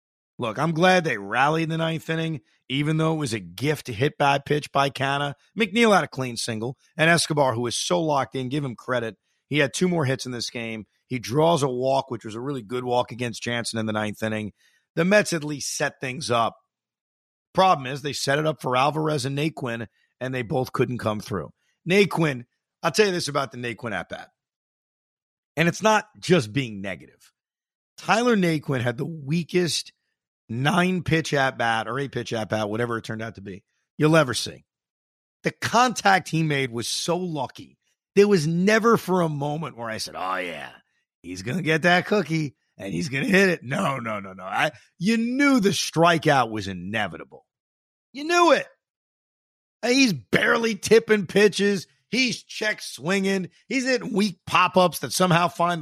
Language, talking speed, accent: English, 185 wpm, American